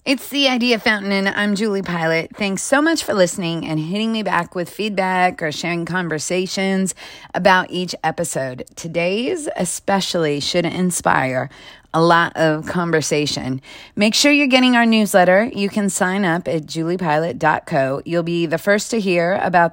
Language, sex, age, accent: English, female, 30-49, American